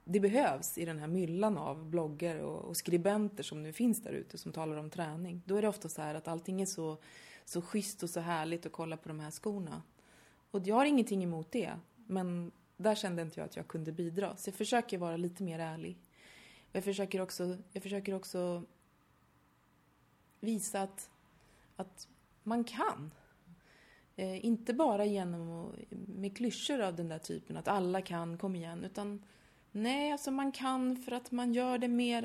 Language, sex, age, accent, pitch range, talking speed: Swedish, female, 30-49, native, 170-215 Hz, 180 wpm